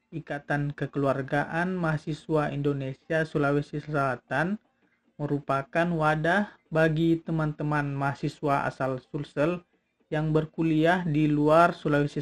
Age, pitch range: 40-59, 145-175 Hz